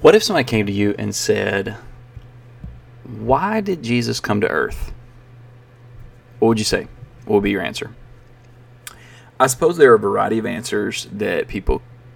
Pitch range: 110-125 Hz